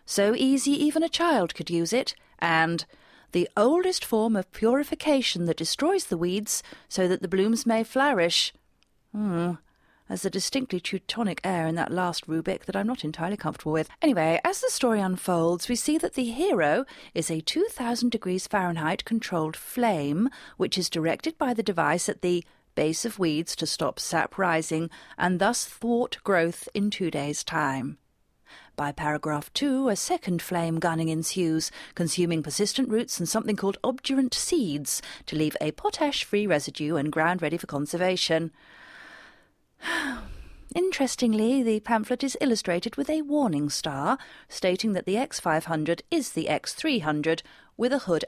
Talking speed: 155 wpm